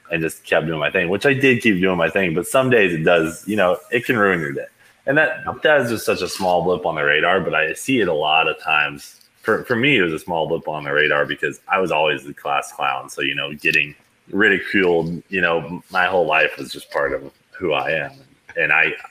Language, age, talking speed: English, 20-39, 260 wpm